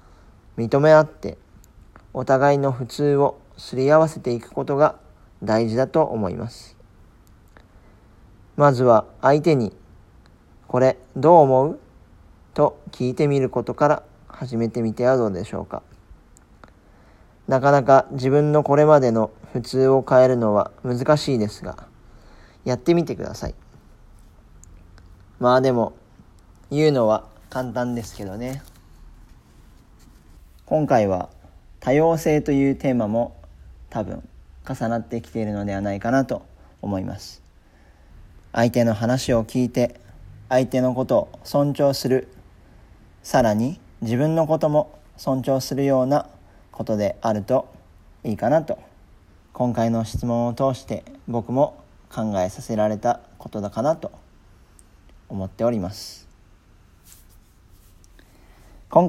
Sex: male